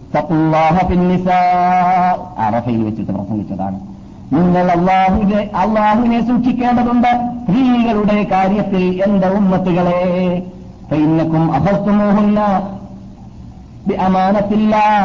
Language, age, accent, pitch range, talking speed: Malayalam, 50-69, native, 180-245 Hz, 45 wpm